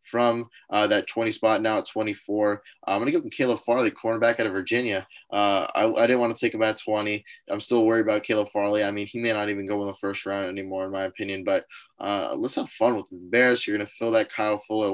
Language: English